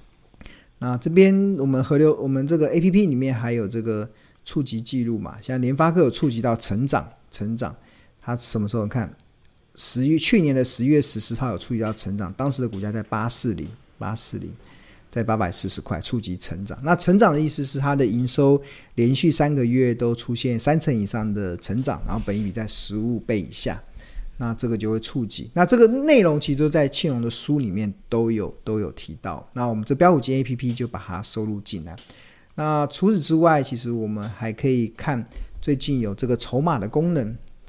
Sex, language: male, Chinese